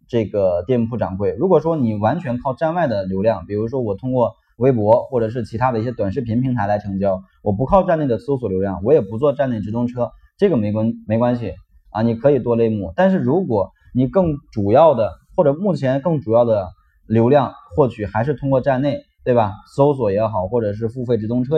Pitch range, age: 105-140 Hz, 20-39